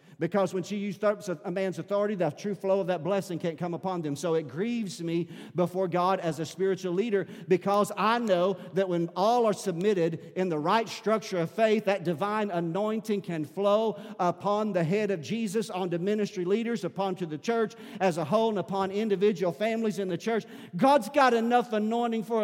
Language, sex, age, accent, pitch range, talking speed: English, male, 50-69, American, 180-220 Hz, 195 wpm